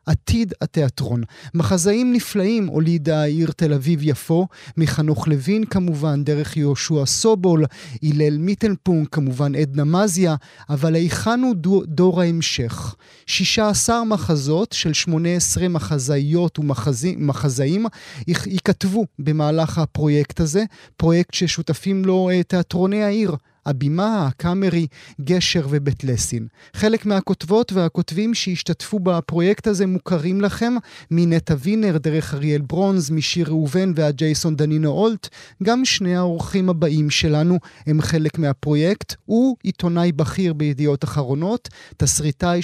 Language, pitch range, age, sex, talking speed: Hebrew, 150-190 Hz, 30-49, male, 115 wpm